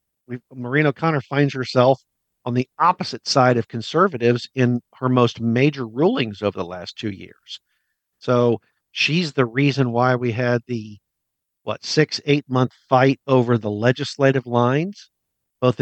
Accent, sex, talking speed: American, male, 140 wpm